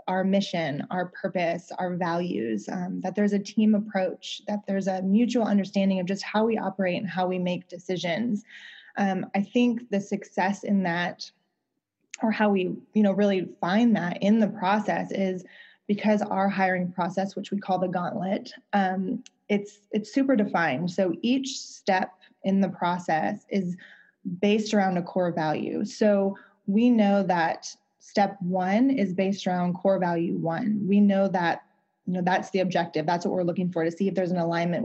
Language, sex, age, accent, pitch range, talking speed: English, female, 20-39, American, 180-205 Hz, 175 wpm